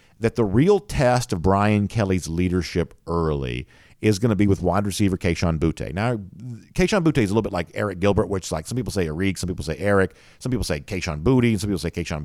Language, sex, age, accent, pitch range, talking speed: English, male, 50-69, American, 90-115 Hz, 235 wpm